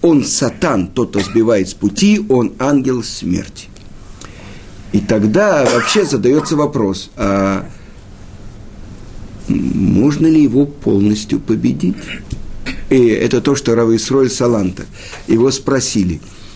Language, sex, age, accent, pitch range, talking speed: Russian, male, 50-69, native, 100-140 Hz, 105 wpm